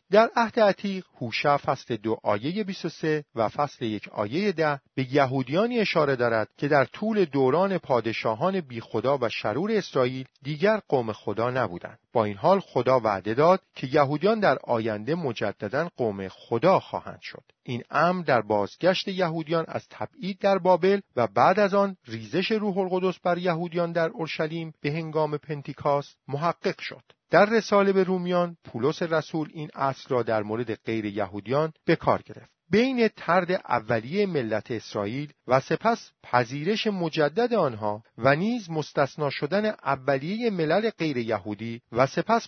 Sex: male